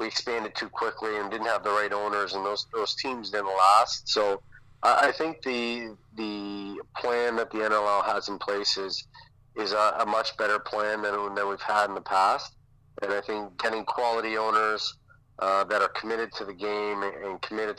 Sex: male